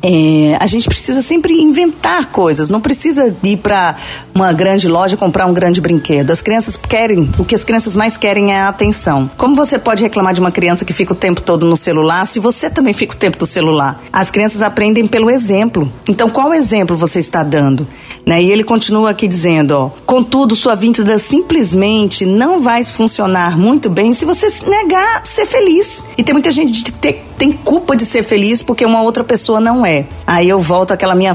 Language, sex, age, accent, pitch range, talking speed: Portuguese, female, 40-59, Brazilian, 185-260 Hz, 205 wpm